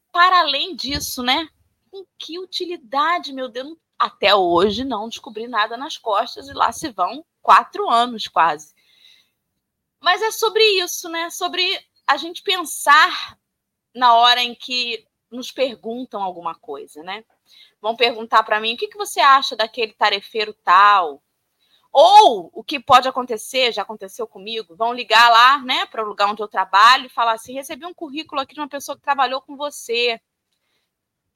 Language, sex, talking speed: Portuguese, female, 165 wpm